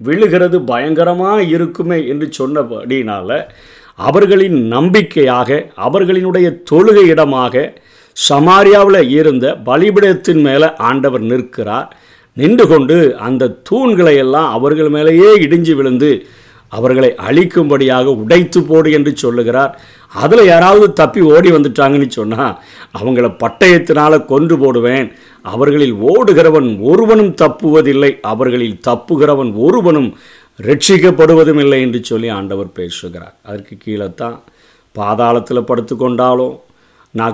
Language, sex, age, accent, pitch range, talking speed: Tamil, male, 50-69, native, 120-160 Hz, 90 wpm